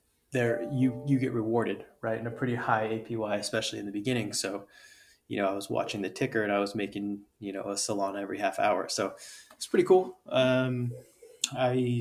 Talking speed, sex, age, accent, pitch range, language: 200 wpm, male, 20-39, American, 105-130 Hz, English